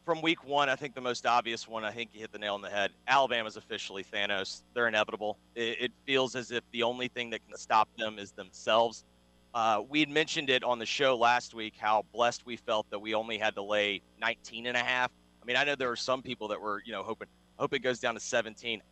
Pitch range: 105-125 Hz